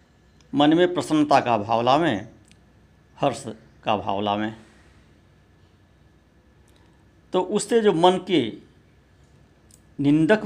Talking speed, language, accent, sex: 90 wpm, Hindi, native, male